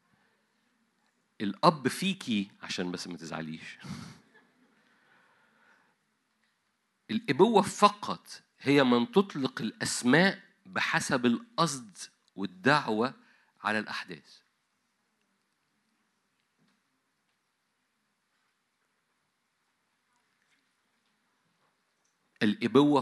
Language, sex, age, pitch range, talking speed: Arabic, male, 50-69, 105-160 Hz, 45 wpm